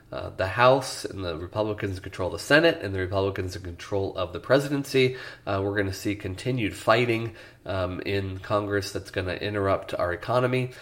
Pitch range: 90-105 Hz